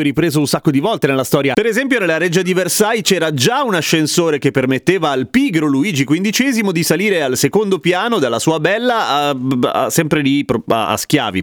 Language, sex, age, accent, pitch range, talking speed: Italian, male, 30-49, native, 145-190 Hz, 190 wpm